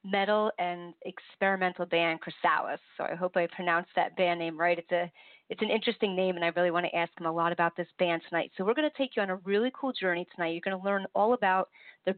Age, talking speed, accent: 30-49, 255 wpm, American